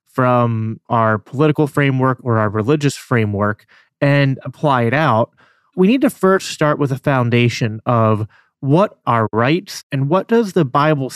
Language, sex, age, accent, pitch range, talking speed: English, male, 30-49, American, 120-155 Hz, 155 wpm